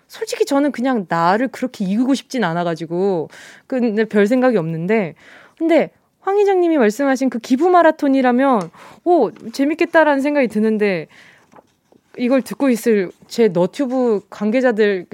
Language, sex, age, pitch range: Korean, female, 20-39, 205-290 Hz